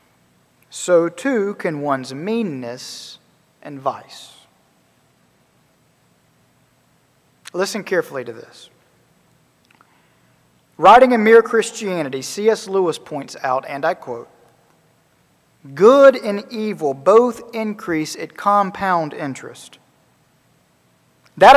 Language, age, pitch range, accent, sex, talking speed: English, 40-59, 150-230 Hz, American, male, 85 wpm